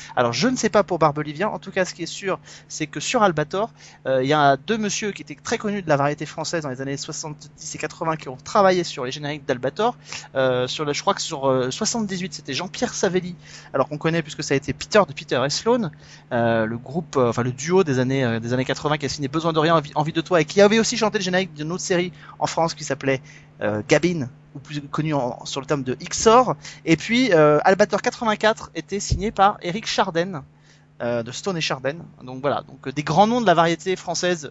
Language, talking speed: French, 245 wpm